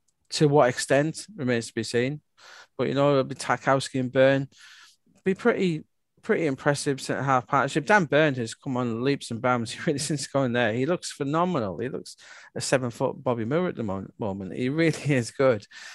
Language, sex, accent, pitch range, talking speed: English, male, British, 120-145 Hz, 190 wpm